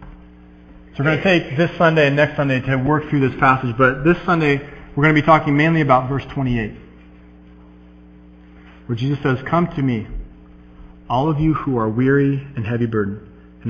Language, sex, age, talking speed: English, male, 40-59, 190 wpm